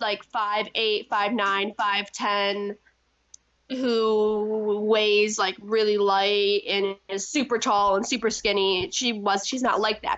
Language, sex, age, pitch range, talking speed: English, female, 10-29, 205-260 Hz, 130 wpm